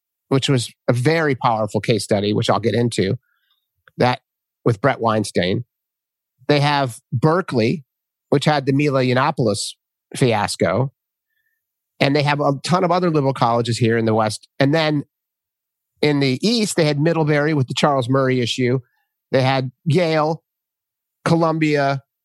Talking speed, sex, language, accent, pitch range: 145 wpm, male, English, American, 125-160 Hz